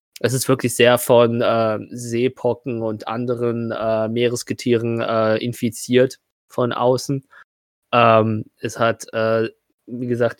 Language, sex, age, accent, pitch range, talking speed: German, male, 20-39, German, 110-120 Hz, 120 wpm